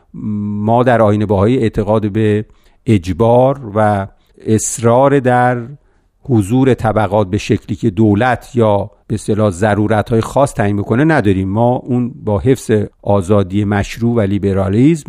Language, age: Persian, 50-69